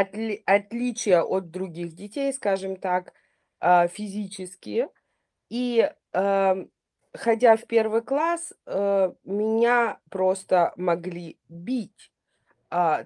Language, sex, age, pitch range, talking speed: Russian, female, 20-39, 170-225 Hz, 75 wpm